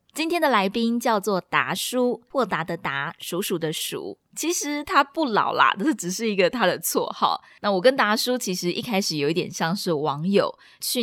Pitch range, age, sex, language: 170-230 Hz, 20-39, female, Chinese